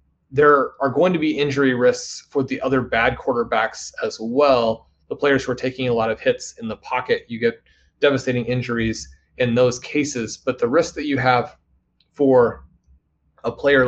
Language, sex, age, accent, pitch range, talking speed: English, male, 30-49, American, 115-140 Hz, 180 wpm